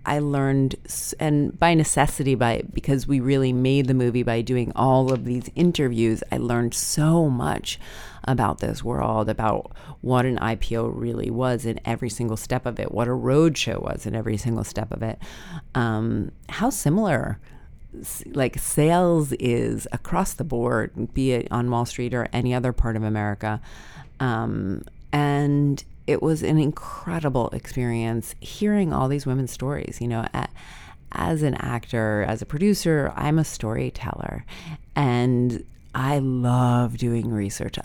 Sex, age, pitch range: female, 30-49, 115-135 Hz